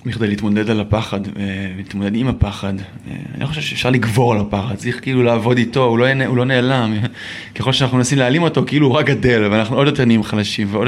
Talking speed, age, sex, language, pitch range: 215 wpm, 20-39, male, Hebrew, 110-125 Hz